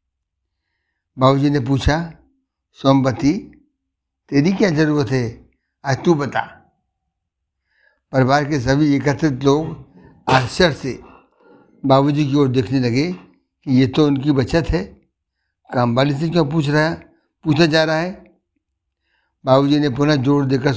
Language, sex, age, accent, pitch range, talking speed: Hindi, male, 60-79, native, 125-150 Hz, 125 wpm